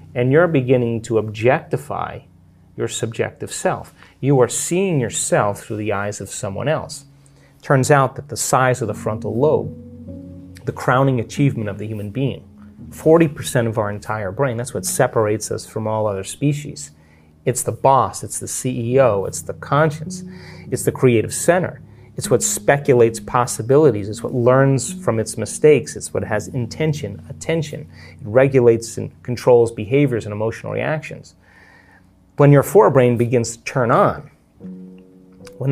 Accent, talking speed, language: American, 155 wpm, English